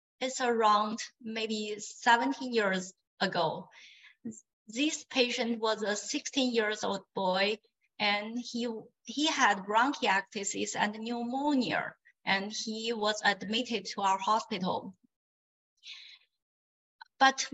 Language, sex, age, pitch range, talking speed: English, female, 20-39, 215-265 Hz, 100 wpm